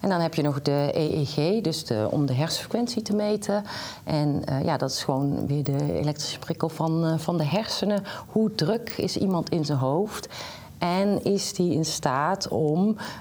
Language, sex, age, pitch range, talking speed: Dutch, female, 40-59, 145-180 Hz, 185 wpm